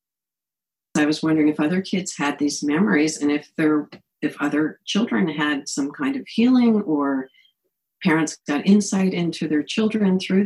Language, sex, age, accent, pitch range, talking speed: English, female, 50-69, American, 150-195 Hz, 160 wpm